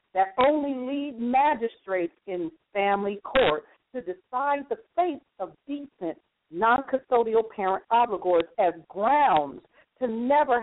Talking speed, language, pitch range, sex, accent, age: 115 wpm, English, 180-255 Hz, female, American, 50-69